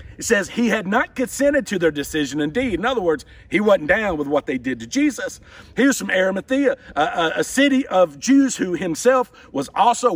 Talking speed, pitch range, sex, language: 215 wpm, 175-255 Hz, male, English